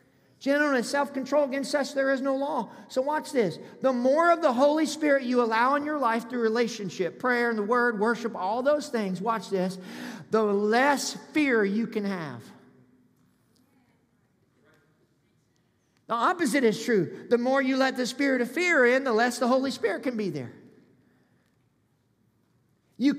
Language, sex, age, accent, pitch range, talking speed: English, male, 50-69, American, 215-285 Hz, 165 wpm